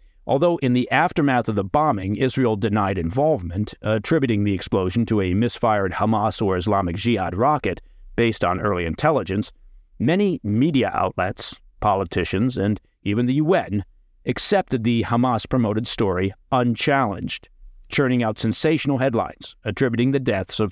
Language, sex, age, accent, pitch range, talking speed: English, male, 50-69, American, 100-125 Hz, 135 wpm